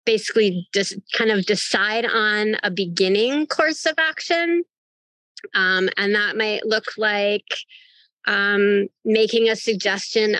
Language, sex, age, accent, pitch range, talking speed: English, female, 20-39, American, 190-225 Hz, 120 wpm